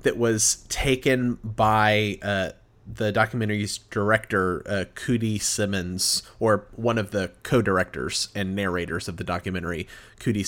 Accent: American